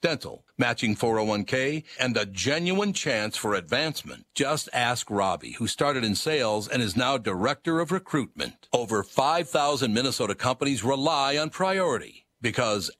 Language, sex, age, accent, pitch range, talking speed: English, male, 60-79, American, 100-135 Hz, 140 wpm